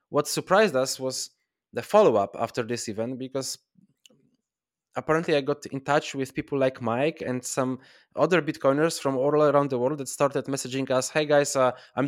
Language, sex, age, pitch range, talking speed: English, male, 20-39, 125-150 Hz, 180 wpm